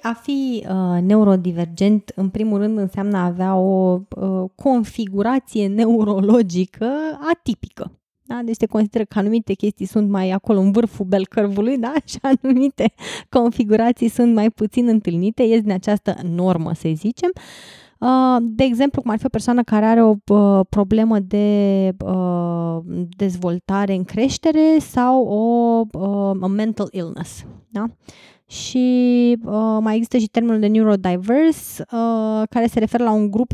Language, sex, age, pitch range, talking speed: Romanian, female, 20-39, 200-245 Hz, 140 wpm